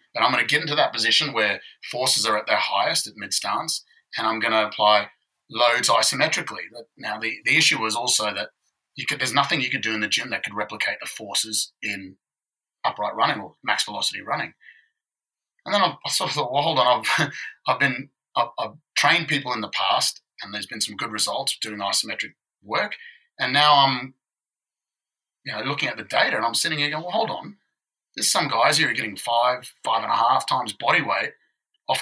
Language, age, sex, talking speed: English, 30-49, male, 210 wpm